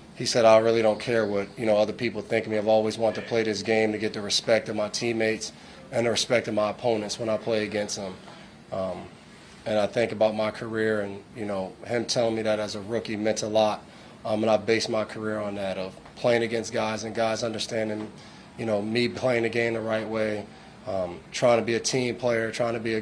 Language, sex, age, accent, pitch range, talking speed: English, male, 30-49, American, 105-115 Hz, 245 wpm